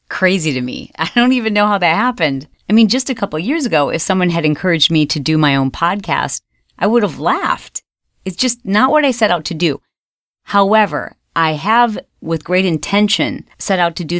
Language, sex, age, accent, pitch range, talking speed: English, female, 30-49, American, 155-210 Hz, 215 wpm